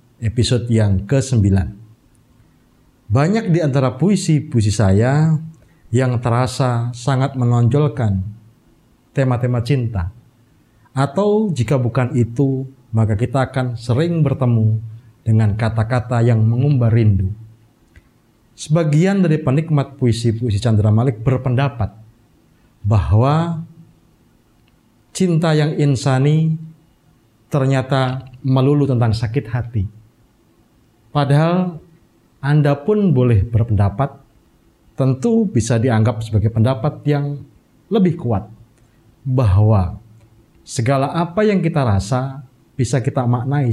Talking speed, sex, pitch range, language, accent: 90 wpm, male, 110-140 Hz, Indonesian, native